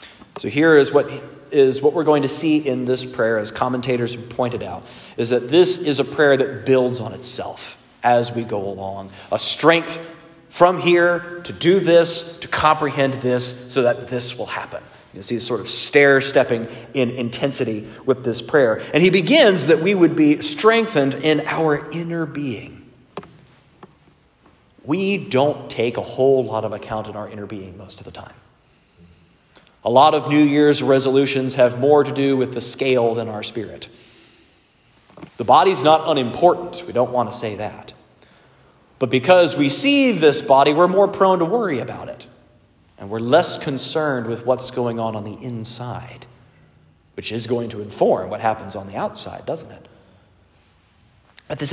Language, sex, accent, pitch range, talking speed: English, male, American, 115-155 Hz, 175 wpm